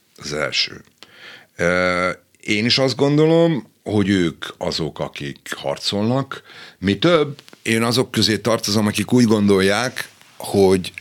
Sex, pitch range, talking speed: male, 85-110 Hz, 115 wpm